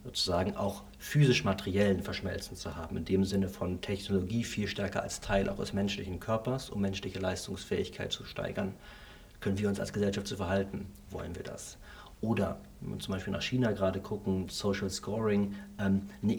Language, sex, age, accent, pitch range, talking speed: German, male, 50-69, German, 95-105 Hz, 170 wpm